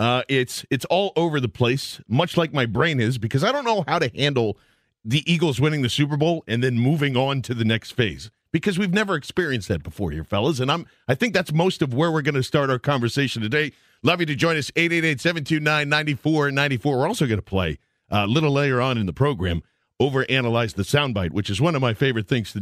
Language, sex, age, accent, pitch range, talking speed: English, male, 50-69, American, 115-150 Hz, 250 wpm